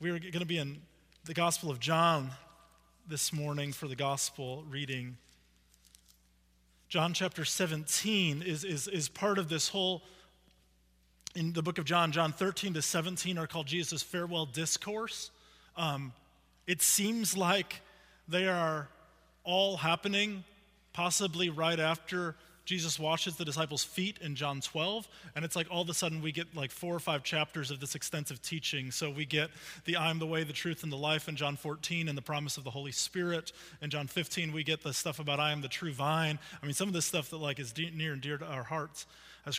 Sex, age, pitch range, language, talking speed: male, 30-49, 145-175 Hz, English, 195 wpm